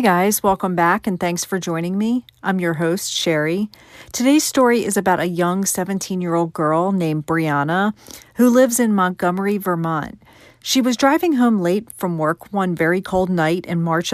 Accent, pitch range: American, 165-205 Hz